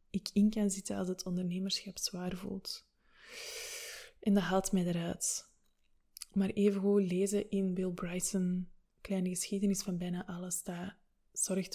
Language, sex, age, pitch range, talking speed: Dutch, female, 20-39, 190-215 Hz, 140 wpm